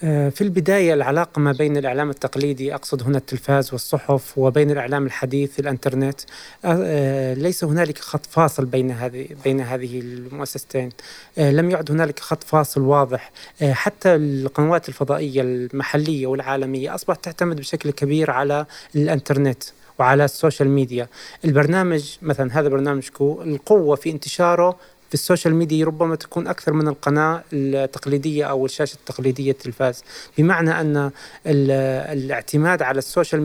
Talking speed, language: 125 wpm, Arabic